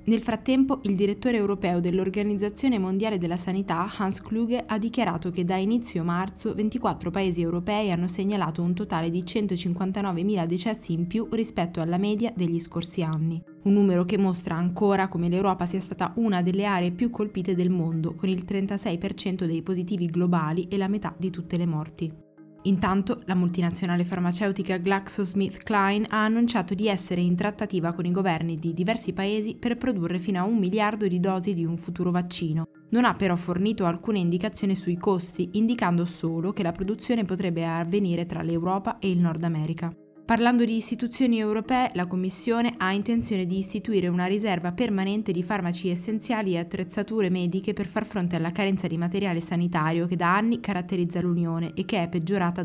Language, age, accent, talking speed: Italian, 20-39, native, 170 wpm